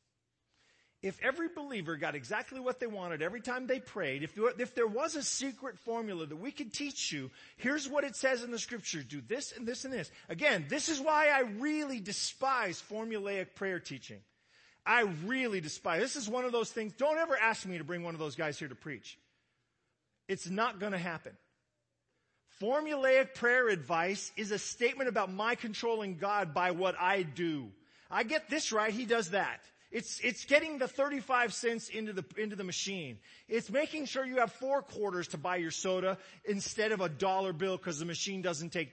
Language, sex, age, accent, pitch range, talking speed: English, male, 40-59, American, 180-260 Hz, 195 wpm